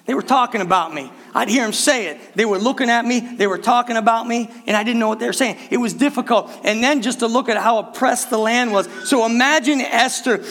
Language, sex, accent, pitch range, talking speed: English, male, American, 180-235 Hz, 255 wpm